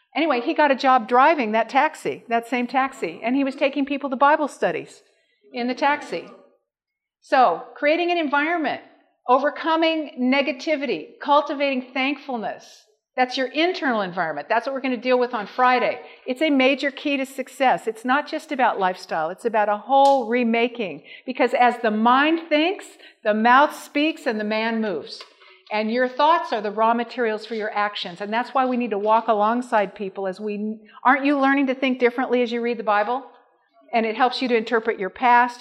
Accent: American